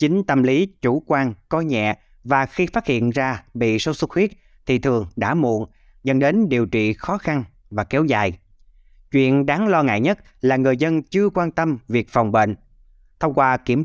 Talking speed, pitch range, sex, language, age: 200 wpm, 115-155 Hz, male, Vietnamese, 20-39